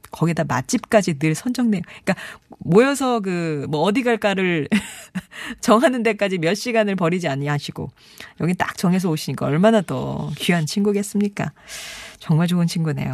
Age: 40-59